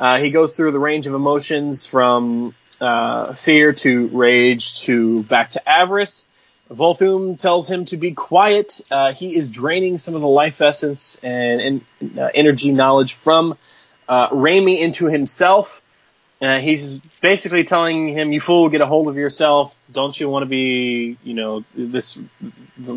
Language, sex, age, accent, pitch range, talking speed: English, male, 20-39, American, 135-175 Hz, 165 wpm